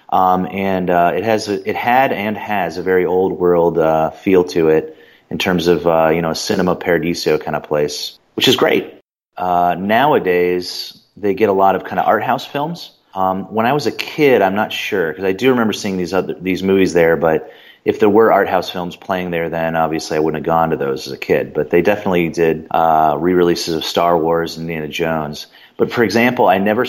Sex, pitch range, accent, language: male, 80-95 Hz, American, English